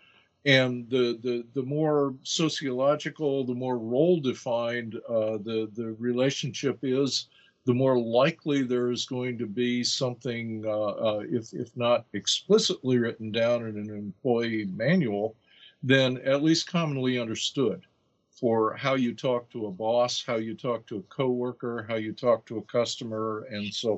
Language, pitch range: English, 110-135 Hz